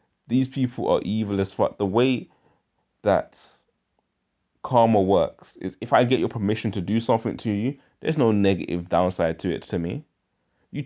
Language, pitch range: English, 90-115 Hz